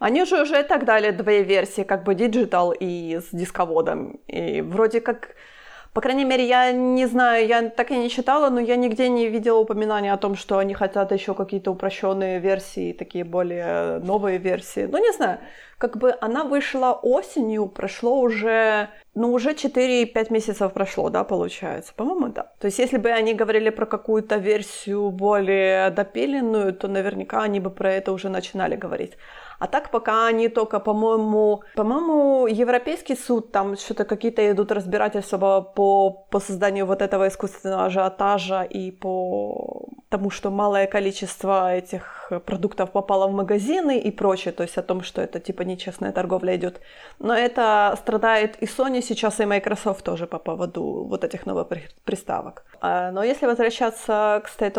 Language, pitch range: Ukrainian, 195-230 Hz